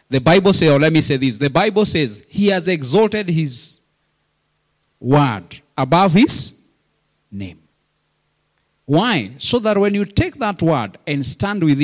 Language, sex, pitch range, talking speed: English, male, 130-180 Hz, 150 wpm